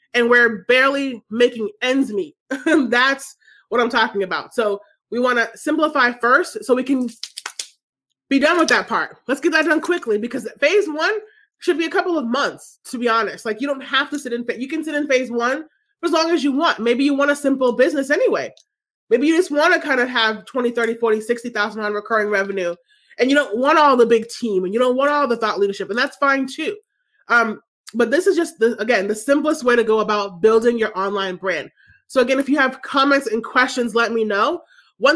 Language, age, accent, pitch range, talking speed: English, 30-49, American, 225-290 Hz, 225 wpm